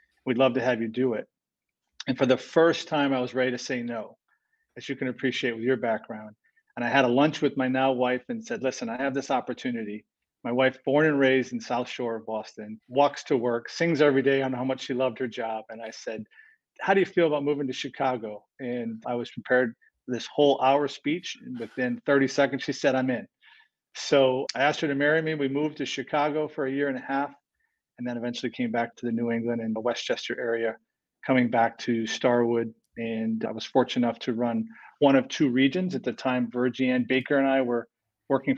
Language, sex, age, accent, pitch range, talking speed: English, male, 40-59, American, 120-140 Hz, 225 wpm